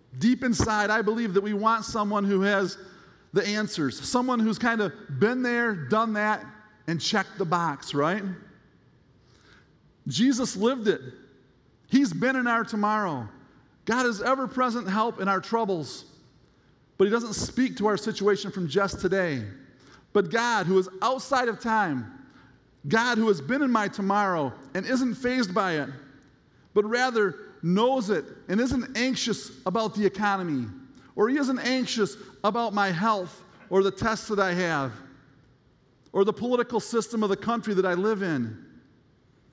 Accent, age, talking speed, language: American, 40-59, 155 wpm, English